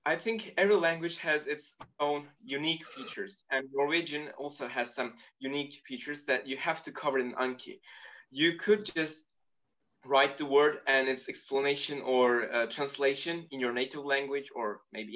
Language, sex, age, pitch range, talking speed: English, male, 20-39, 130-160 Hz, 160 wpm